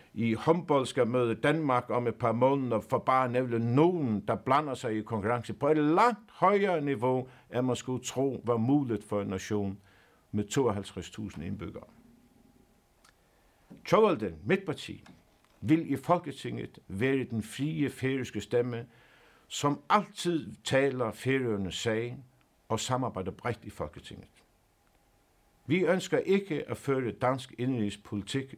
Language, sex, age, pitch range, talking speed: Danish, male, 60-79, 100-135 Hz, 135 wpm